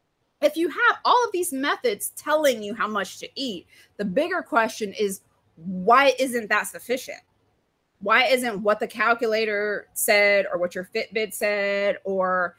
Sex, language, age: female, English, 30-49